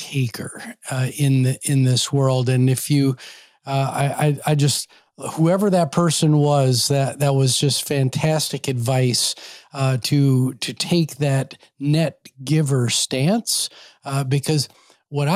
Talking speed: 140 wpm